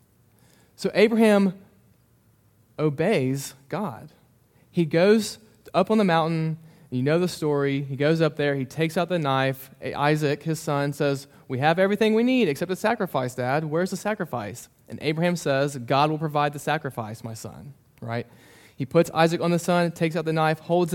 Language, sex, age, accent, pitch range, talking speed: English, male, 30-49, American, 135-180 Hz, 175 wpm